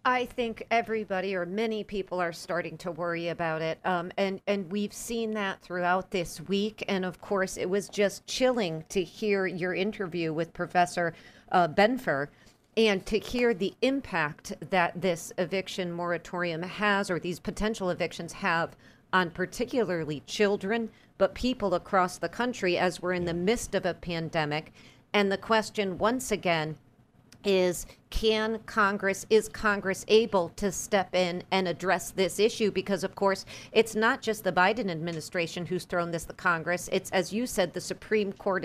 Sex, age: female, 40-59